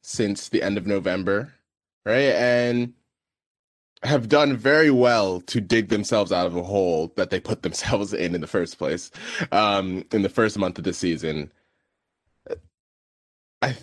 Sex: male